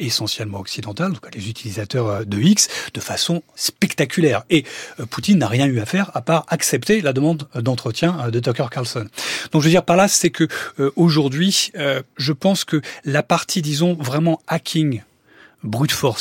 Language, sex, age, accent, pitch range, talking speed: French, male, 30-49, French, 120-170 Hz, 175 wpm